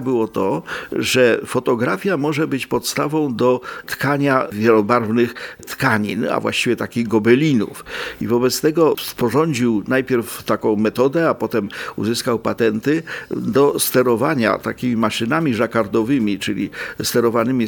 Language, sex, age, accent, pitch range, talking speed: Polish, male, 50-69, native, 115-150 Hz, 110 wpm